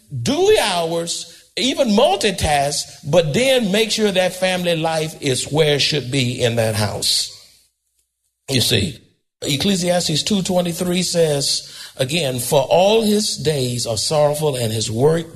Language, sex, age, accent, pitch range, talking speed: English, male, 50-69, American, 120-170 Hz, 135 wpm